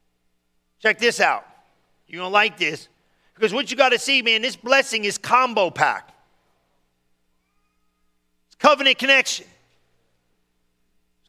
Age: 40-59